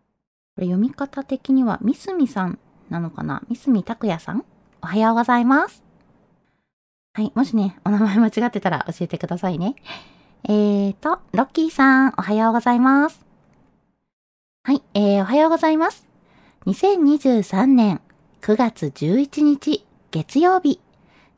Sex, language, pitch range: female, Japanese, 180-255 Hz